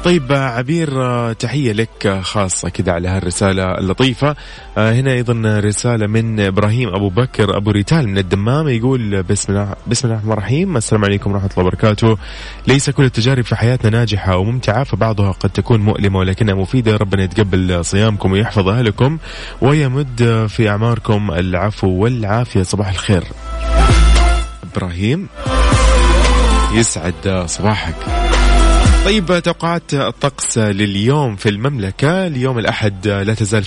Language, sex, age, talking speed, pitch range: Arabic, male, 20-39, 125 wpm, 100-125 Hz